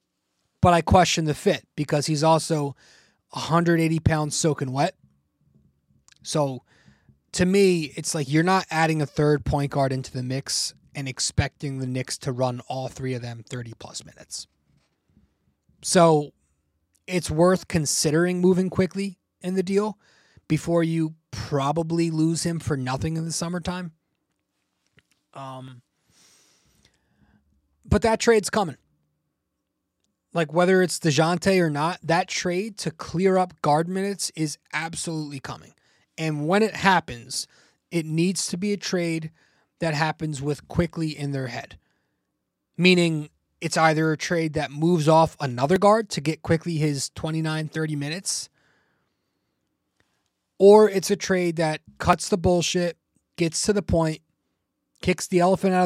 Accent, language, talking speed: American, English, 140 wpm